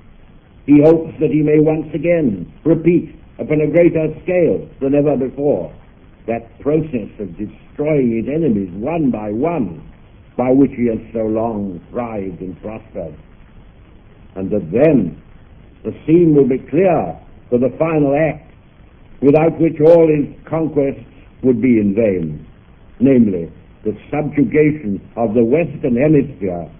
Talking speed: 135 wpm